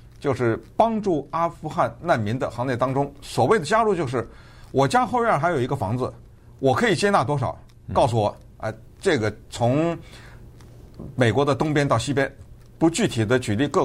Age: 50-69